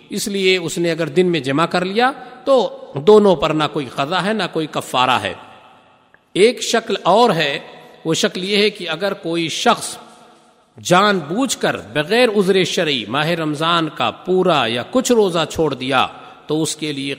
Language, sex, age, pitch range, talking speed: Urdu, male, 50-69, 130-185 Hz, 180 wpm